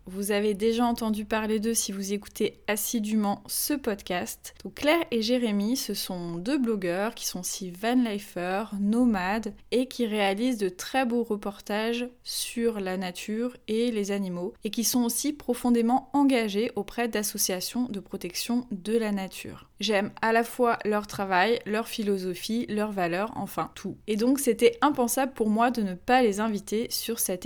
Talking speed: 165 wpm